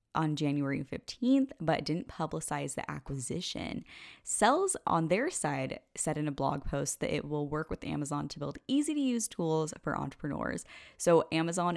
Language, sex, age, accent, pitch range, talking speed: English, female, 10-29, American, 150-230 Hz, 170 wpm